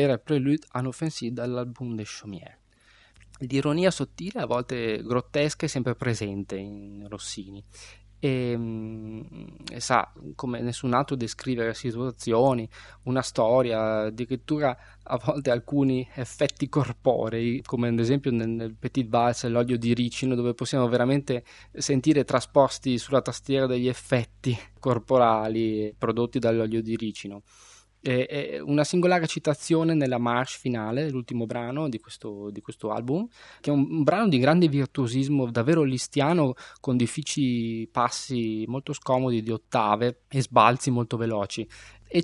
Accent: native